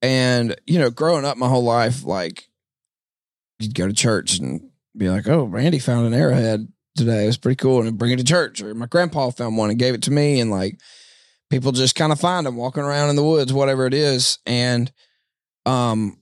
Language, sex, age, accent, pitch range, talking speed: English, male, 20-39, American, 115-140 Hz, 220 wpm